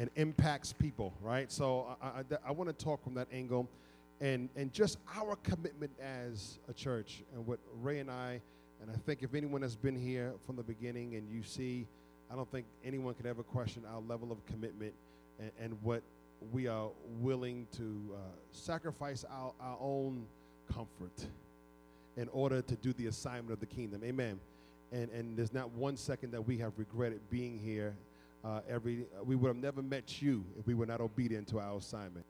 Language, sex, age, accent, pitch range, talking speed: English, male, 40-59, American, 105-130 Hz, 195 wpm